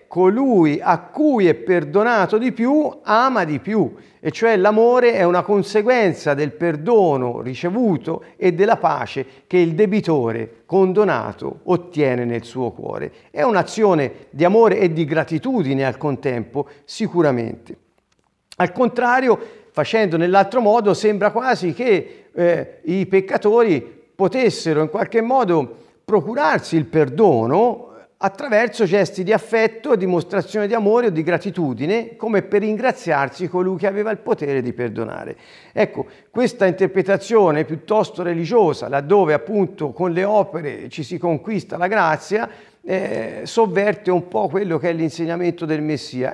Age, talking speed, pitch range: 50-69, 135 wpm, 150-210 Hz